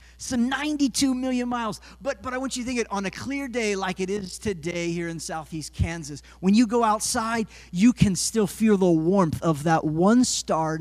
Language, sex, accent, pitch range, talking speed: English, male, American, 160-220 Hz, 215 wpm